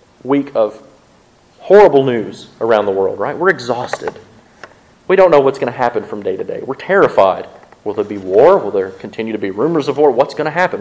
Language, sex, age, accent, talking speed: English, male, 30-49, American, 215 wpm